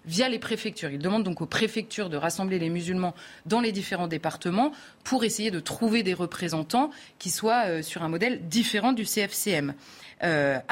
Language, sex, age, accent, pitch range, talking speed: French, female, 30-49, French, 165-225 Hz, 180 wpm